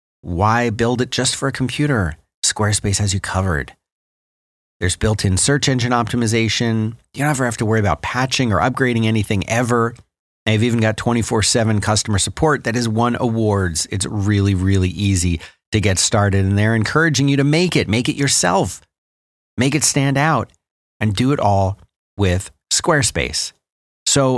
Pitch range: 95-130 Hz